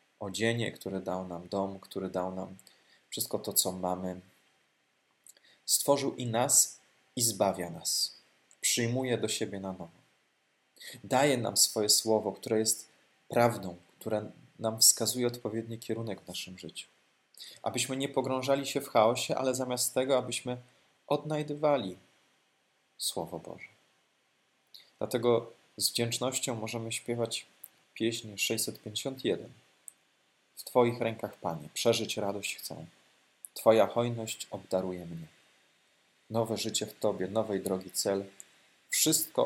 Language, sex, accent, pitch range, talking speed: Polish, male, native, 95-120 Hz, 115 wpm